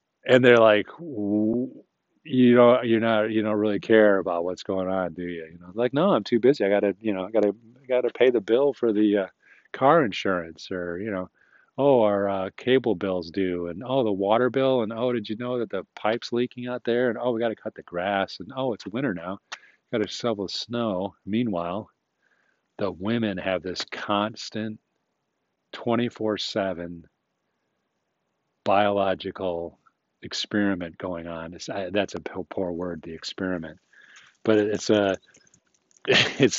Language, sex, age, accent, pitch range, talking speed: English, male, 40-59, American, 95-115 Hz, 170 wpm